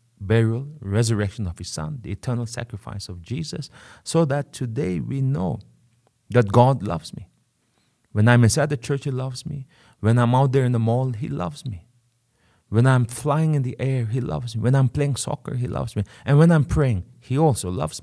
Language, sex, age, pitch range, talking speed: English, male, 30-49, 105-140 Hz, 200 wpm